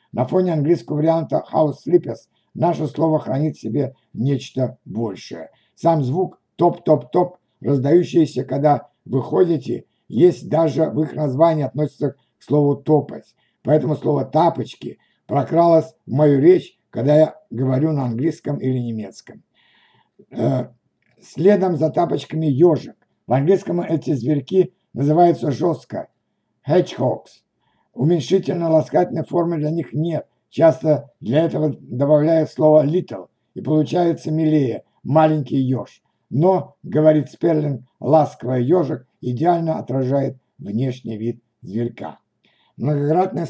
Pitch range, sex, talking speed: 135-165 Hz, male, 110 wpm